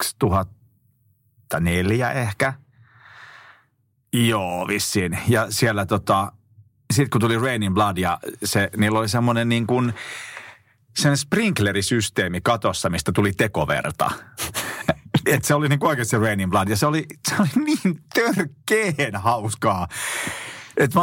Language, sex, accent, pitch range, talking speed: Finnish, male, native, 100-135 Hz, 125 wpm